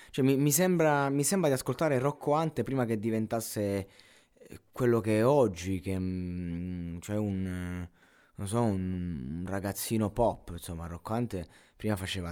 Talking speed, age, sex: 145 wpm, 20-39, male